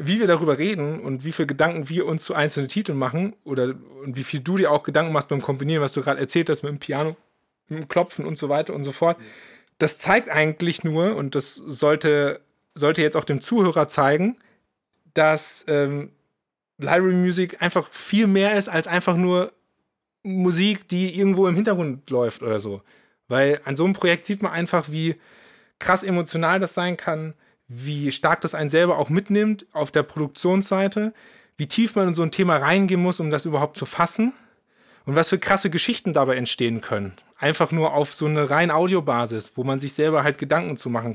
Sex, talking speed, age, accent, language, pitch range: male, 195 wpm, 30-49, German, German, 140-180 Hz